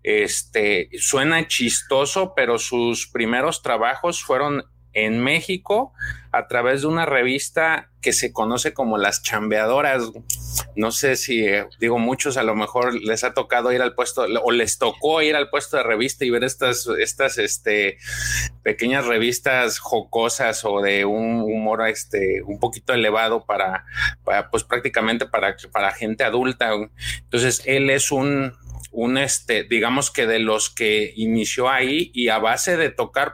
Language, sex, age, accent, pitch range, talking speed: Spanish, male, 30-49, Mexican, 110-135 Hz, 150 wpm